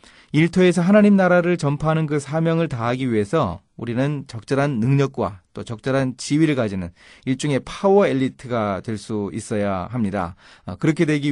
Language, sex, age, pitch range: Korean, male, 30-49, 105-155 Hz